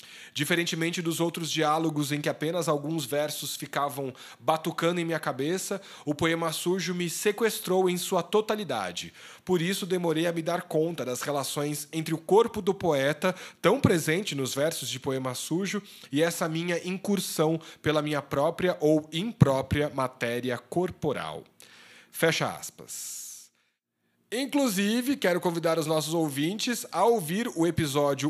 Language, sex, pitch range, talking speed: Portuguese, male, 130-170 Hz, 140 wpm